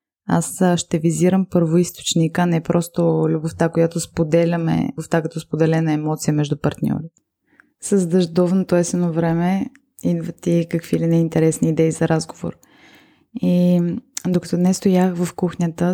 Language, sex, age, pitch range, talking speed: Bulgarian, female, 20-39, 165-185 Hz, 130 wpm